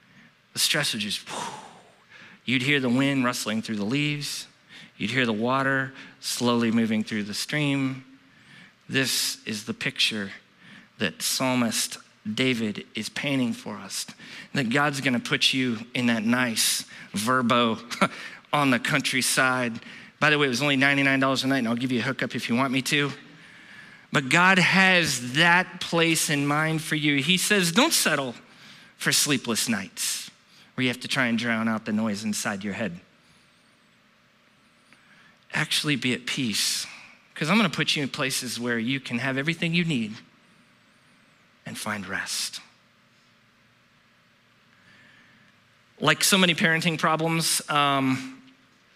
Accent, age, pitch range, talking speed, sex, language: American, 40-59, 125-155 Hz, 145 wpm, male, English